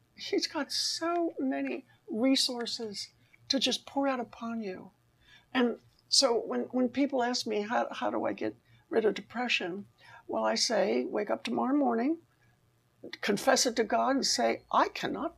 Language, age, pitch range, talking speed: English, 60-79, 180-250 Hz, 160 wpm